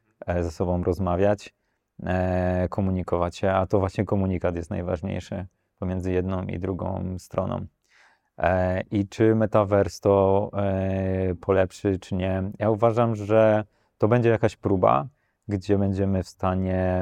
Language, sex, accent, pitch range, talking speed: Polish, male, native, 90-100 Hz, 120 wpm